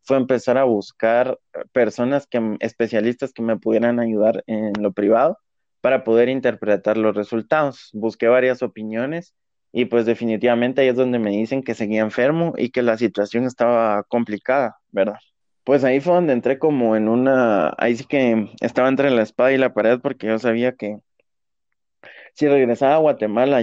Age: 20-39